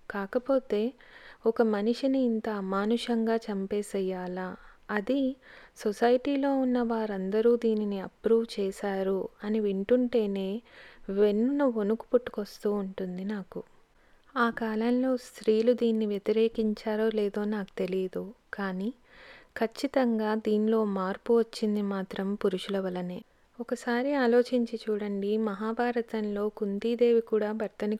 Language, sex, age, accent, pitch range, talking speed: Telugu, female, 30-49, native, 200-240 Hz, 90 wpm